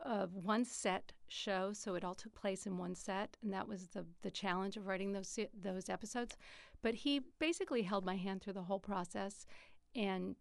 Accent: American